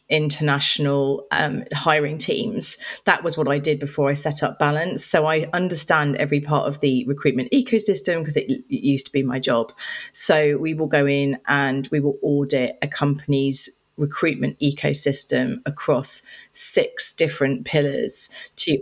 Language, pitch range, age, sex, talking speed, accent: English, 135-155 Hz, 30-49, female, 155 wpm, British